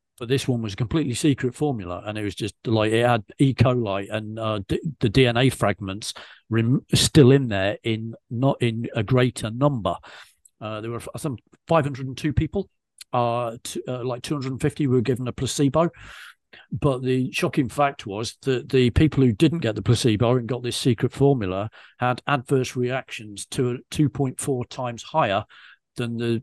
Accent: British